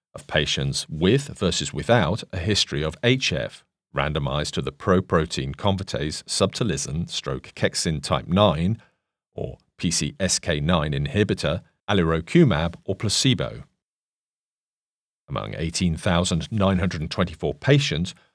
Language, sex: English, male